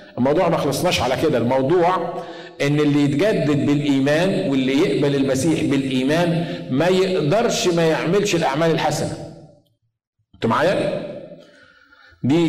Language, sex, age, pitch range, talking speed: Arabic, male, 50-69, 150-195 Hz, 110 wpm